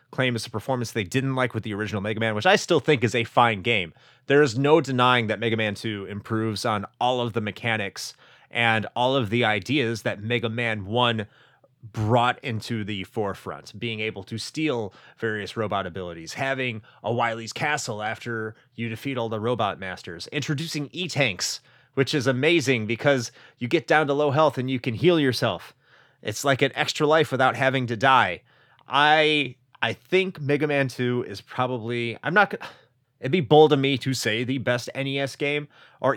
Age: 30-49